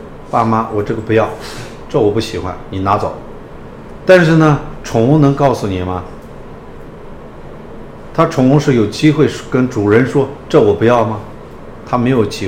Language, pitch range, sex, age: Chinese, 100-135 Hz, male, 50-69